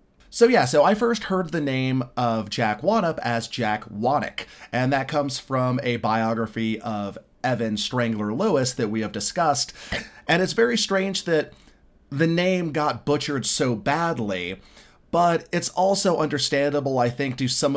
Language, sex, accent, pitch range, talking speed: English, male, American, 115-150 Hz, 160 wpm